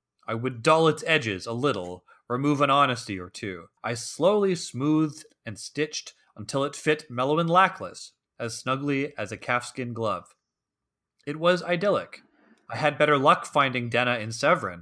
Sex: male